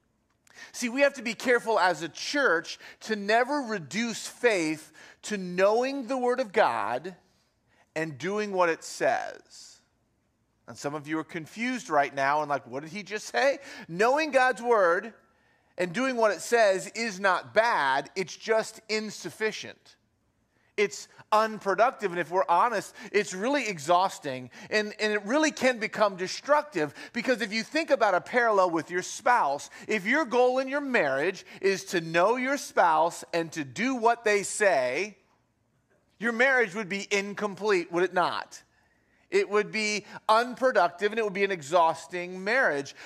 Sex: male